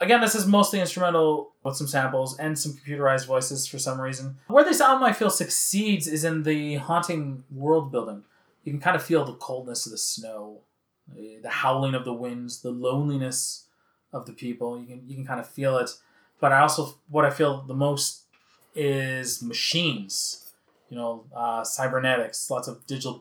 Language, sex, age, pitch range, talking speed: English, male, 20-39, 130-170 Hz, 185 wpm